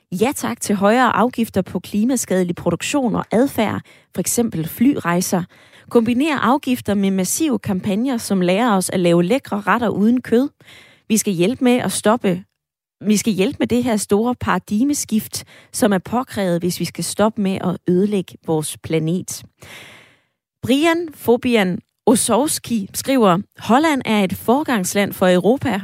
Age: 20-39